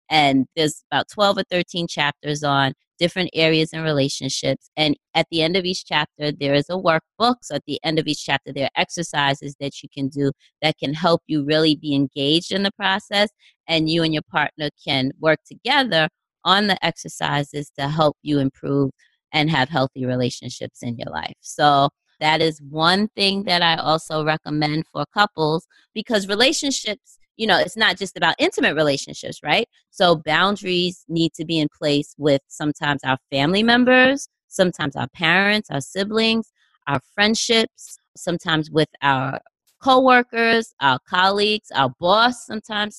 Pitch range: 145-190 Hz